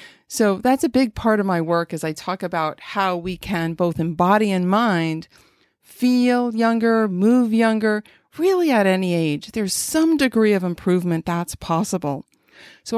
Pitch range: 180-235 Hz